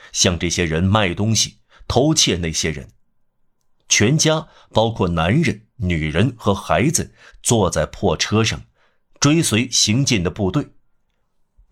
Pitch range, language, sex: 90-125 Hz, Chinese, male